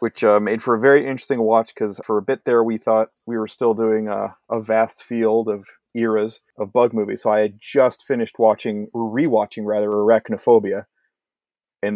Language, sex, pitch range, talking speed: English, male, 105-125 Hz, 190 wpm